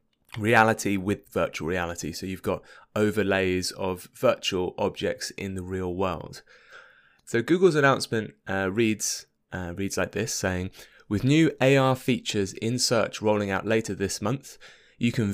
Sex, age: male, 20-39